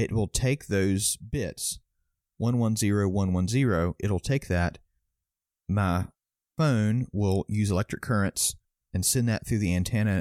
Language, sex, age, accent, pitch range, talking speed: English, male, 40-59, American, 90-110 Hz, 155 wpm